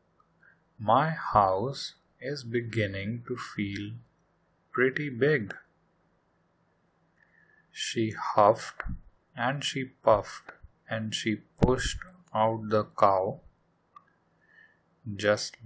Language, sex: English, male